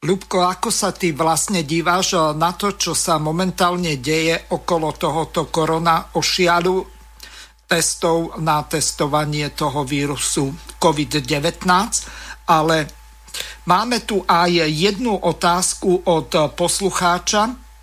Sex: male